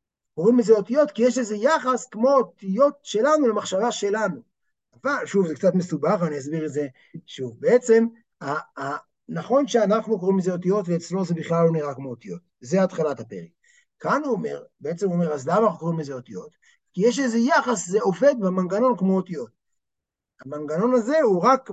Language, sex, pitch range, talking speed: Hebrew, male, 170-235 Hz, 180 wpm